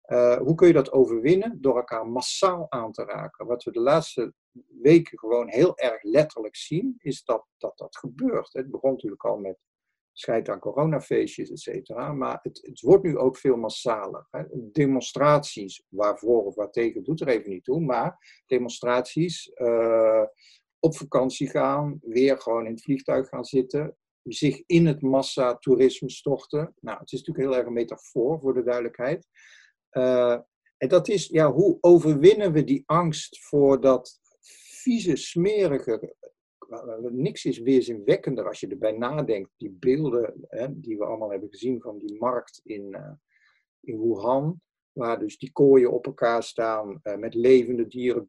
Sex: male